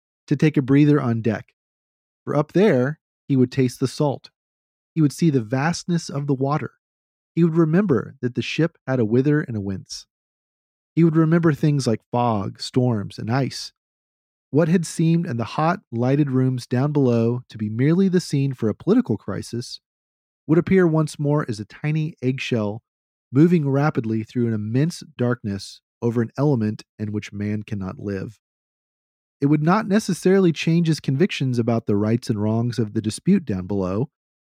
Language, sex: English, male